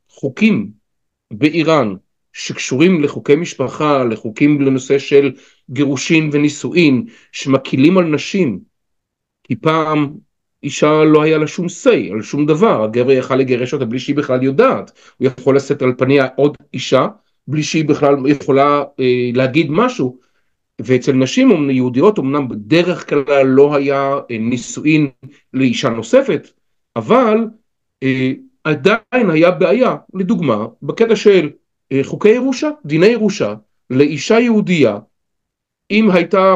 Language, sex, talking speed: Hebrew, male, 120 wpm